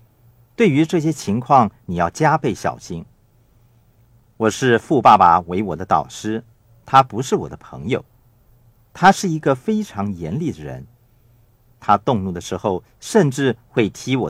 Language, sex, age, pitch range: Chinese, male, 50-69, 110-125 Hz